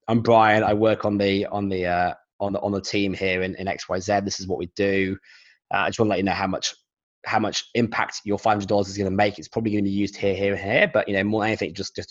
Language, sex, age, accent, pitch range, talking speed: English, male, 20-39, British, 95-115 Hz, 295 wpm